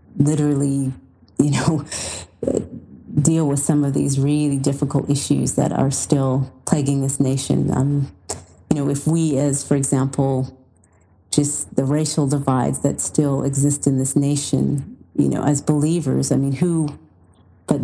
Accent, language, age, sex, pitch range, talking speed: American, English, 30-49, female, 130-145 Hz, 145 wpm